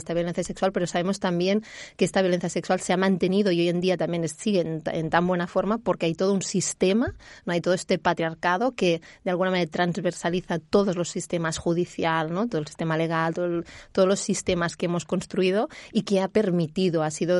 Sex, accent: female, Spanish